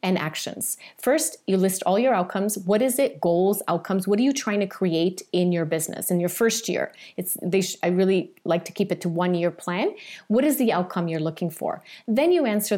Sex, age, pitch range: female, 30-49, 180-255 Hz